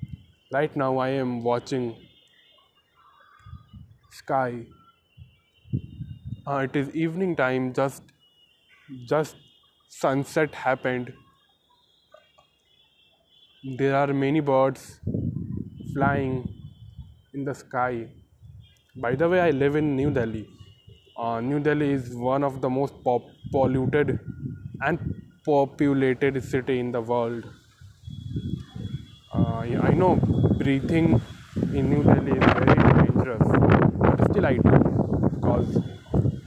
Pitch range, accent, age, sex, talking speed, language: 120-140 Hz, native, 20-39, male, 105 wpm, Hindi